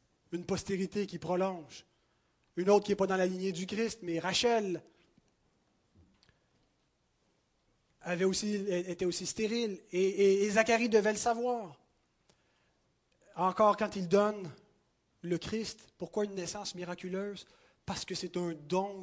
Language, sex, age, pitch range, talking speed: French, male, 30-49, 170-210 Hz, 130 wpm